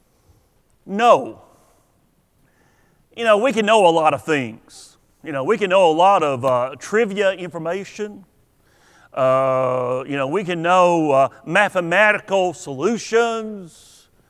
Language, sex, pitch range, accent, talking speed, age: English, male, 155-225 Hz, American, 125 wpm, 50-69